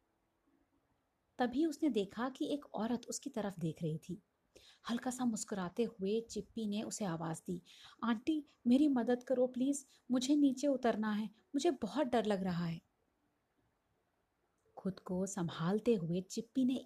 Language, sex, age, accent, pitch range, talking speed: English, female, 30-49, Indian, 185-270 Hz, 145 wpm